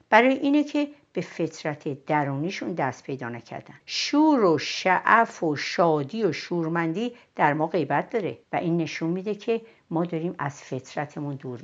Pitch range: 145-220 Hz